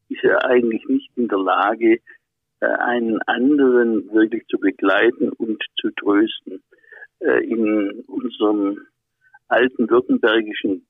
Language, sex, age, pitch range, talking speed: German, male, 60-79, 270-365 Hz, 105 wpm